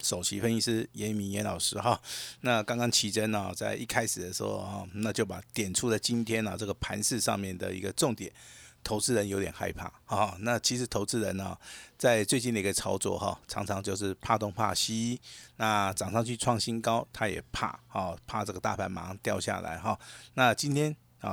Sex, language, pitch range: male, Chinese, 95-115 Hz